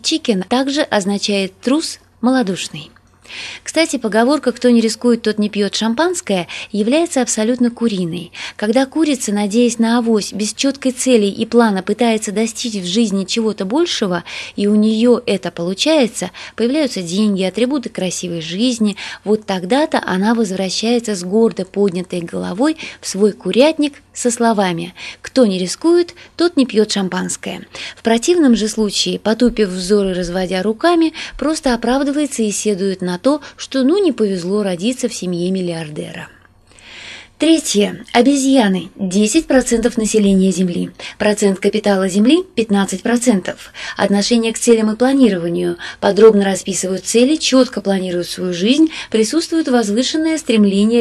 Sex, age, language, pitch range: female, 20-39, Russian, 195-255 Hz